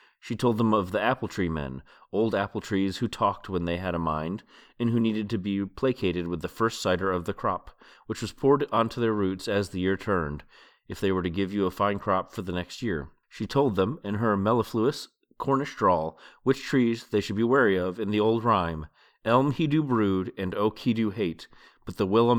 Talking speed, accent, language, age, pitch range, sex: 230 wpm, American, English, 30-49, 95-115 Hz, male